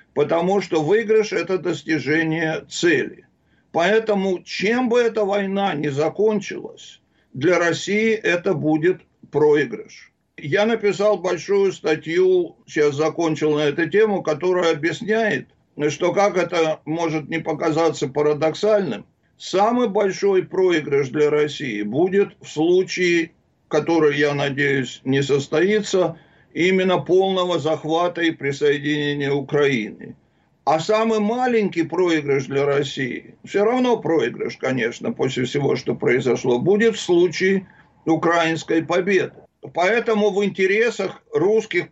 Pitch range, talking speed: 155-205 Hz, 110 wpm